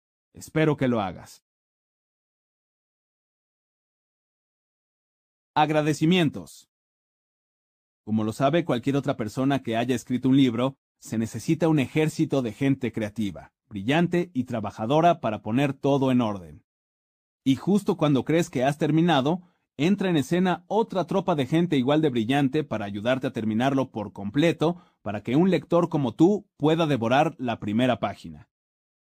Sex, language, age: male, Spanish, 40-59